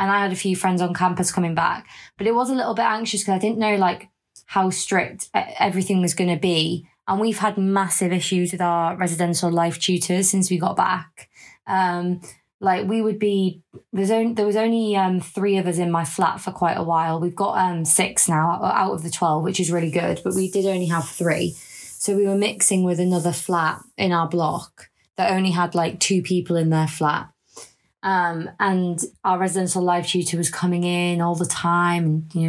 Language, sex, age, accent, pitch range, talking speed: English, female, 20-39, British, 170-195 Hz, 210 wpm